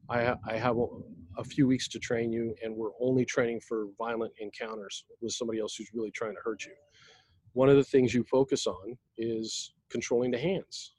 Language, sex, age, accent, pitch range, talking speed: English, male, 40-59, American, 115-140 Hz, 190 wpm